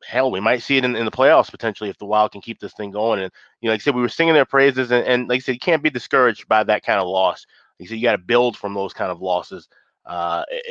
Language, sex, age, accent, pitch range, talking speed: English, male, 30-49, American, 105-125 Hz, 315 wpm